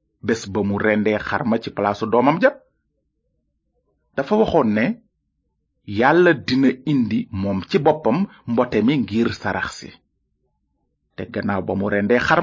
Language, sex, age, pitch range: French, male, 30-49, 105-175 Hz